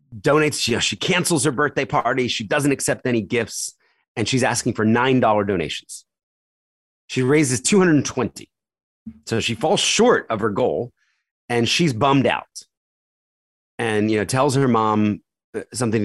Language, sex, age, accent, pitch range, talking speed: English, male, 30-49, American, 85-120 Hz, 150 wpm